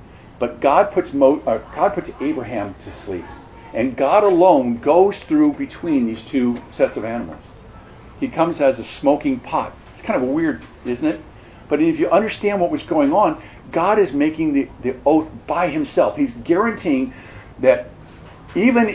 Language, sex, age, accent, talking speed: English, male, 50-69, American, 165 wpm